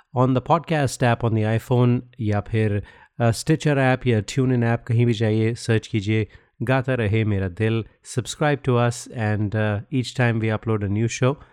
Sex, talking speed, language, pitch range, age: male, 185 wpm, Hindi, 105-125 Hz, 30-49